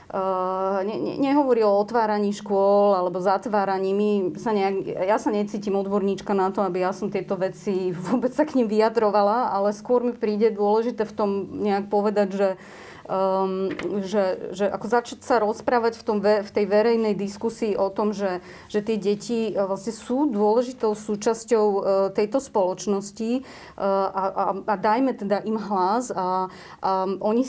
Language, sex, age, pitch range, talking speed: Slovak, female, 30-49, 195-220 Hz, 155 wpm